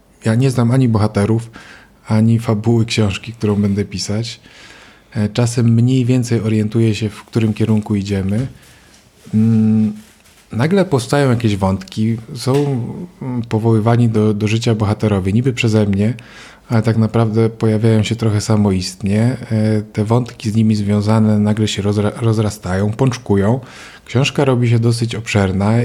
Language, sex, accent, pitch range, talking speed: Polish, male, native, 105-120 Hz, 125 wpm